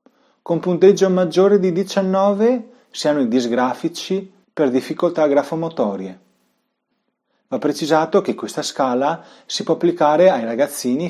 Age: 30-49